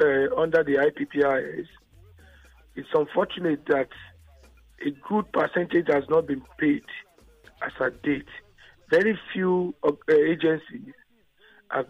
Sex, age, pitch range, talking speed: male, 50-69, 140-190 Hz, 110 wpm